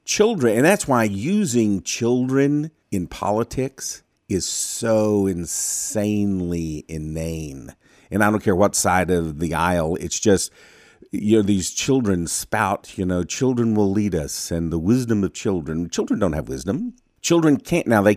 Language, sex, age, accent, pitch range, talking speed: English, male, 50-69, American, 90-125 Hz, 155 wpm